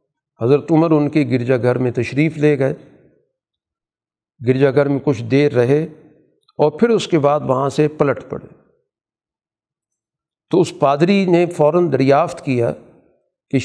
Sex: male